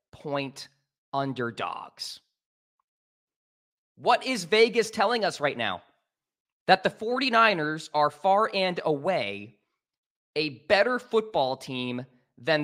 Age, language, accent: 20-39, English, American